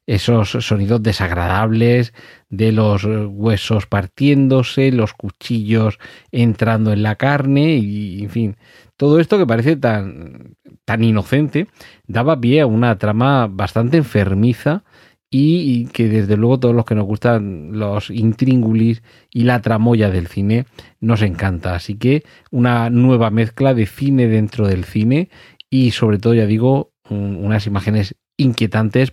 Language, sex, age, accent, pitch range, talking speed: Spanish, male, 40-59, Spanish, 105-130 Hz, 135 wpm